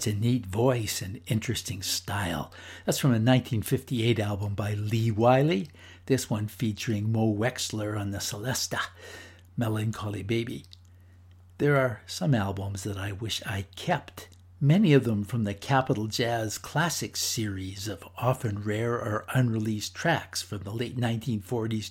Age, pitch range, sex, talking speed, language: 60-79, 100-125 Hz, male, 140 wpm, English